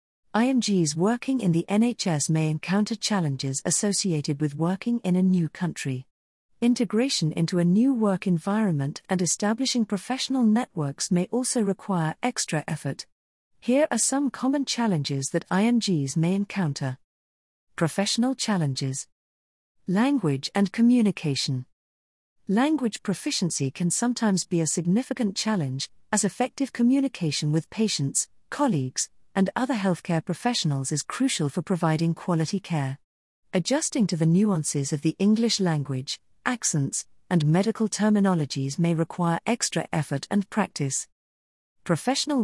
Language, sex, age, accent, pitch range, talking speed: English, female, 40-59, British, 150-215 Hz, 125 wpm